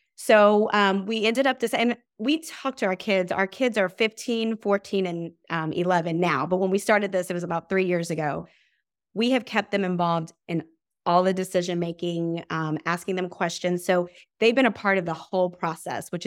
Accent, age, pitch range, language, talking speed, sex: American, 30-49, 175-215 Hz, English, 205 wpm, female